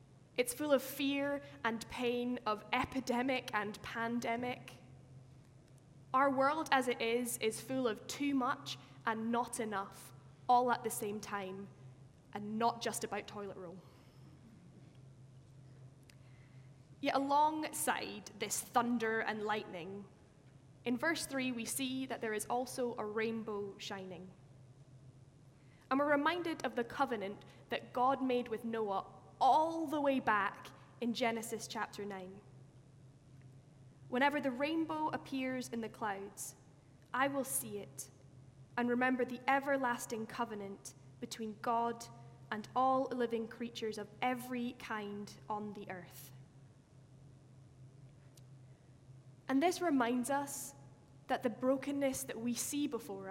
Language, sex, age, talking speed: English, female, 10-29, 125 wpm